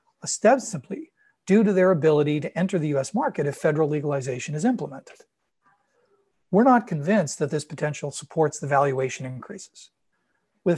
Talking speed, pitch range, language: 150 wpm, 150-200 Hz, English